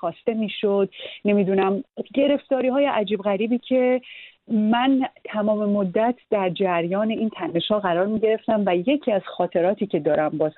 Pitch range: 170-215 Hz